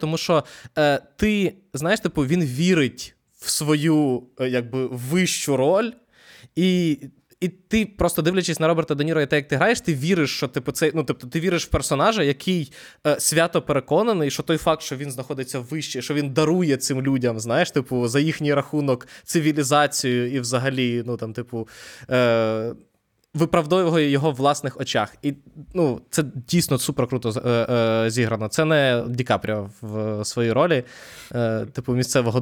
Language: Ukrainian